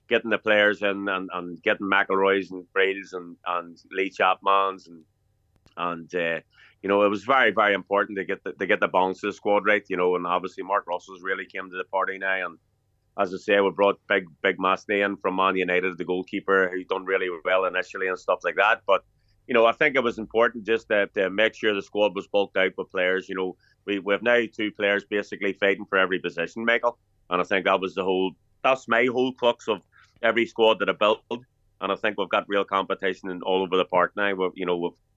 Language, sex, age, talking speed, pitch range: English, male, 30-49, 235 wpm, 90-105 Hz